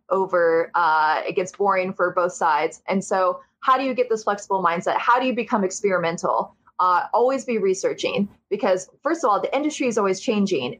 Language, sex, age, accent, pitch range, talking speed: English, female, 20-39, American, 185-250 Hz, 195 wpm